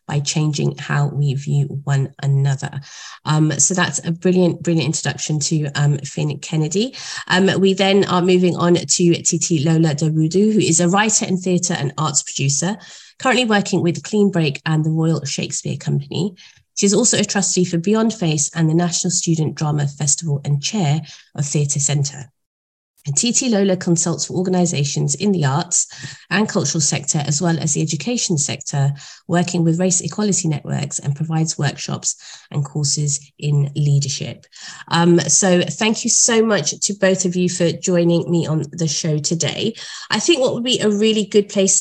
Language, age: English, 30-49